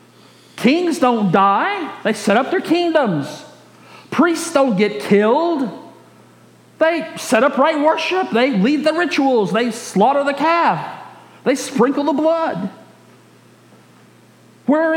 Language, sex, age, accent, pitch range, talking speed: English, male, 40-59, American, 180-275 Hz, 120 wpm